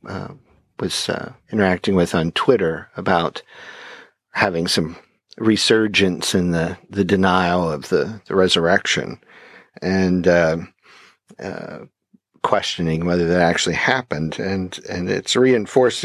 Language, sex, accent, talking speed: English, male, American, 115 wpm